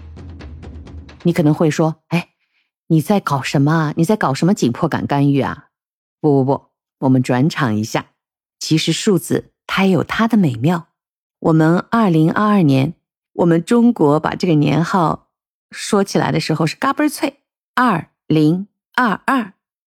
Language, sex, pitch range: Chinese, female, 140-210 Hz